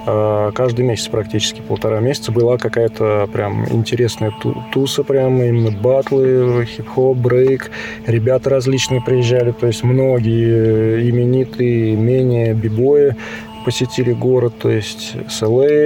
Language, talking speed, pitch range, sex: Russian, 110 wpm, 110-130 Hz, male